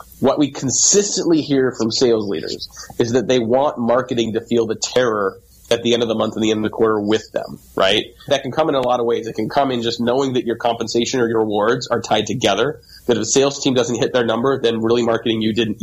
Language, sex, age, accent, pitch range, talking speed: English, male, 30-49, American, 110-130 Hz, 260 wpm